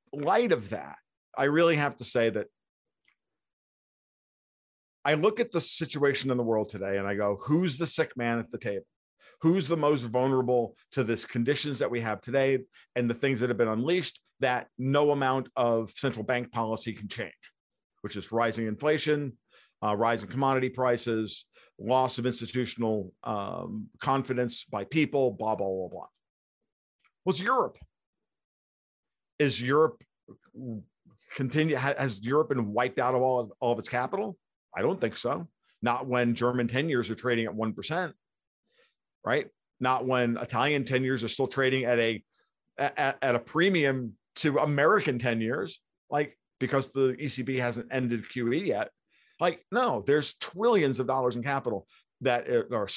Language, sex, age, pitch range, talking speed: English, male, 50-69, 115-140 Hz, 155 wpm